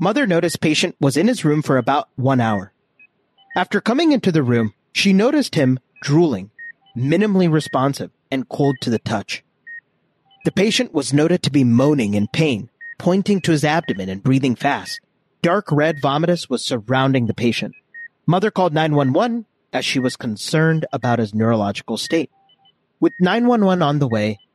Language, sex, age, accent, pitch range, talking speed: English, male, 30-49, American, 130-190 Hz, 160 wpm